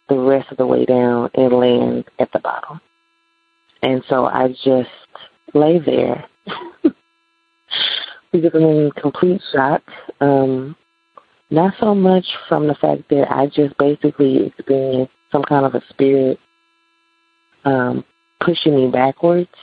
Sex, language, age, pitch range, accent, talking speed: female, English, 30-49, 135-205 Hz, American, 130 wpm